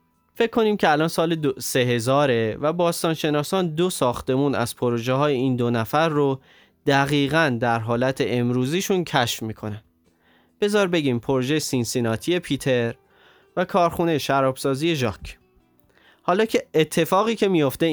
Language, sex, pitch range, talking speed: Persian, male, 120-165 Hz, 125 wpm